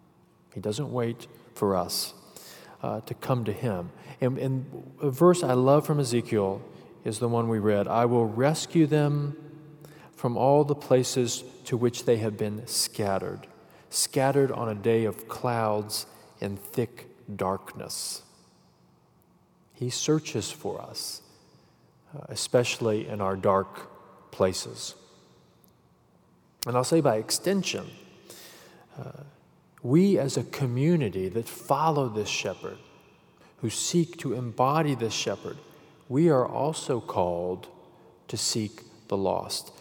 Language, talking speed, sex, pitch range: English, 125 wpm, male, 110-145 Hz